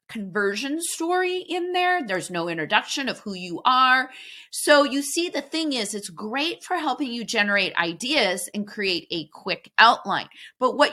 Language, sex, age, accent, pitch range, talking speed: English, female, 30-49, American, 195-295 Hz, 170 wpm